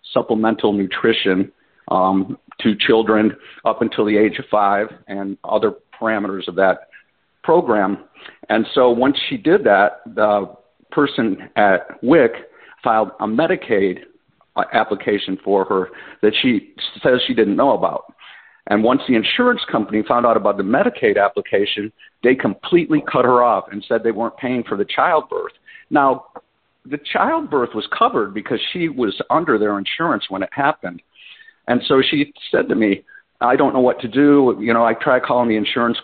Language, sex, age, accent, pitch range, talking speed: English, male, 50-69, American, 105-145 Hz, 160 wpm